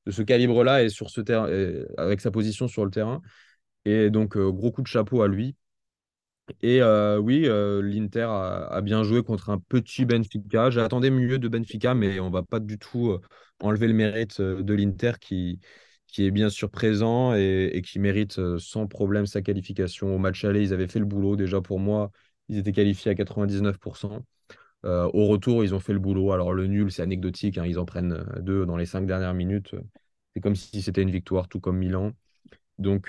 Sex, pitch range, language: male, 95-110 Hz, French